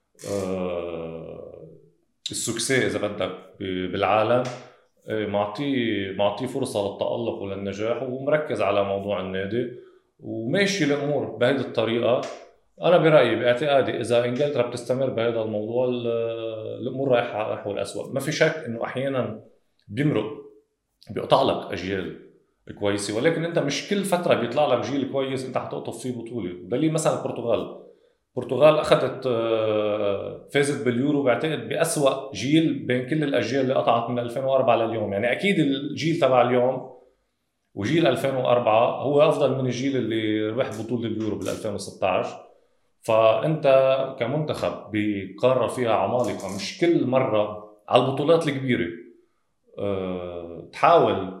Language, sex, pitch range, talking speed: English, male, 105-140 Hz, 115 wpm